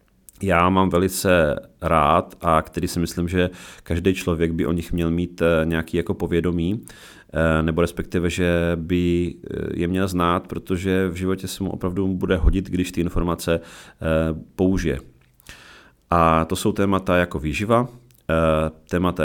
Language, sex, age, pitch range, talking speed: Czech, male, 30-49, 80-95 Hz, 140 wpm